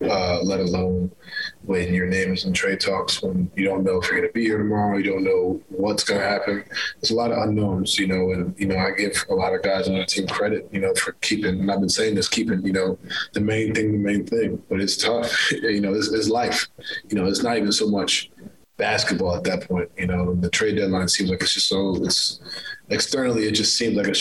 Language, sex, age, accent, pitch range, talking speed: English, male, 20-39, American, 95-105 Hz, 250 wpm